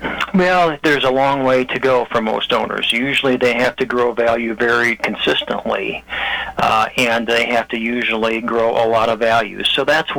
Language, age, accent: English, 50-69, American